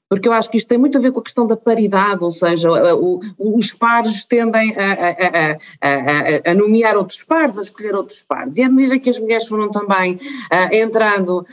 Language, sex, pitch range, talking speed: Portuguese, female, 170-225 Hz, 200 wpm